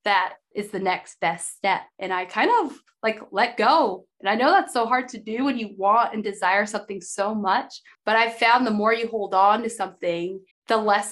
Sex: female